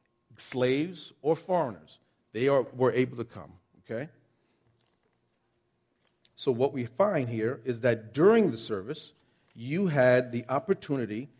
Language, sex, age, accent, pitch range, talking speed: English, male, 40-59, American, 115-150 Hz, 125 wpm